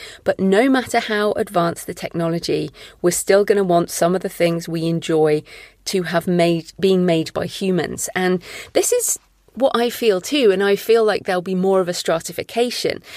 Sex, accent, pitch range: female, British, 165-195 Hz